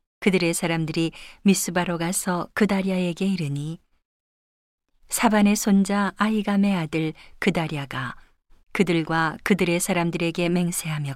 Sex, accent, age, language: female, native, 40-59, Korean